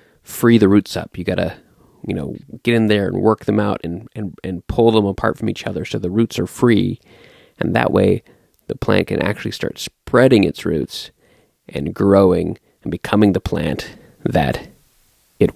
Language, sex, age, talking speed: English, male, 30-49, 190 wpm